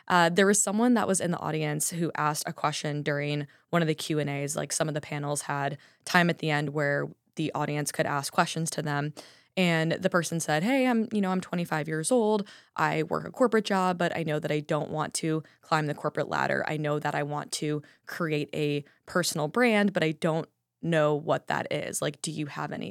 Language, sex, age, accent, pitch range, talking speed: English, female, 20-39, American, 150-180 Hz, 230 wpm